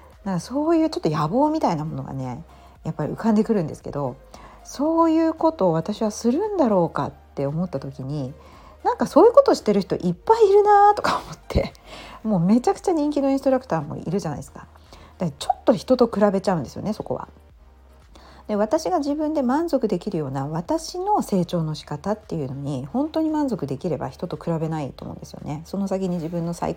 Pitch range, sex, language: 160-270 Hz, female, Japanese